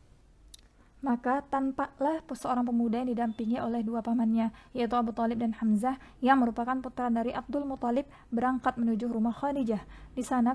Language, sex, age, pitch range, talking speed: Indonesian, female, 20-39, 225-260 Hz, 155 wpm